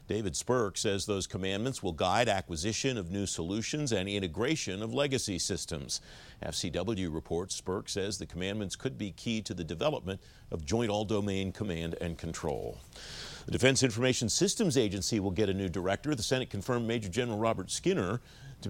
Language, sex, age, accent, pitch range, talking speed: English, male, 50-69, American, 90-115 Hz, 165 wpm